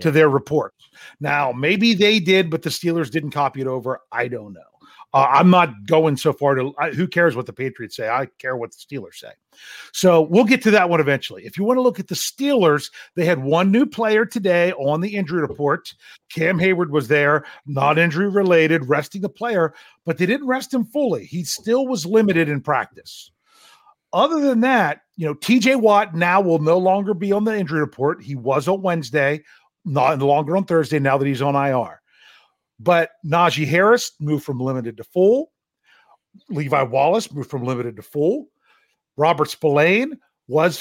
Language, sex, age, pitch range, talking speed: English, male, 40-59, 140-200 Hz, 195 wpm